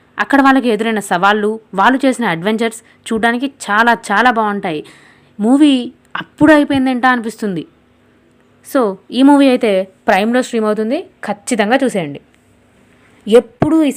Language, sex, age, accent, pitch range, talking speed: Telugu, female, 20-39, native, 195-255 Hz, 115 wpm